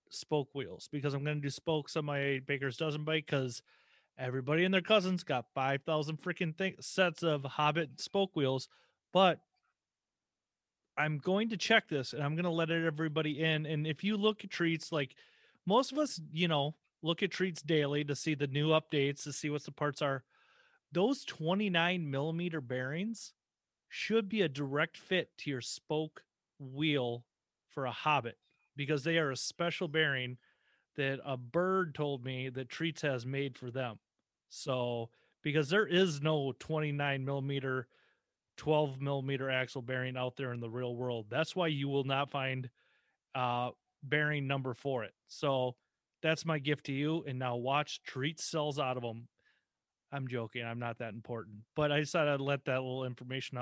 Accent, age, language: American, 30-49, English